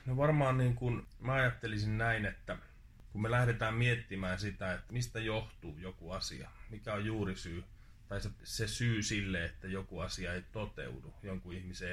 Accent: native